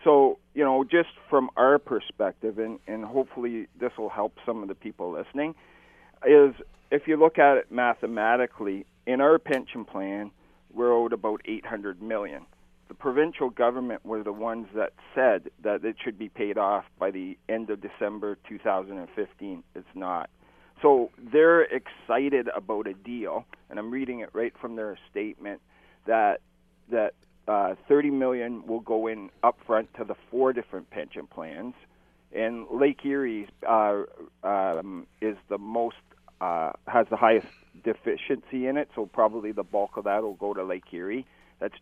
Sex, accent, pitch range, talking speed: male, American, 110-145 Hz, 160 wpm